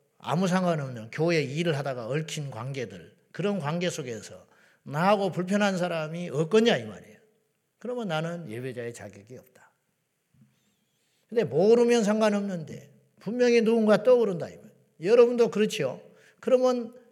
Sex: male